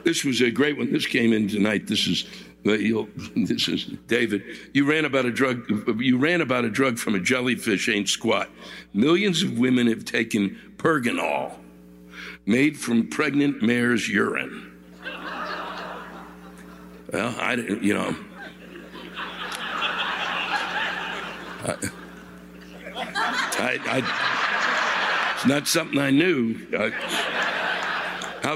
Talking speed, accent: 120 wpm, American